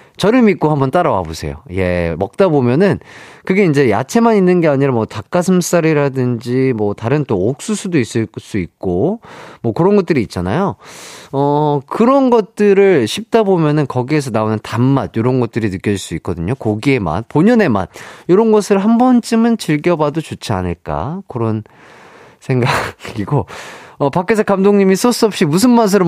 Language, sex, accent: Korean, male, native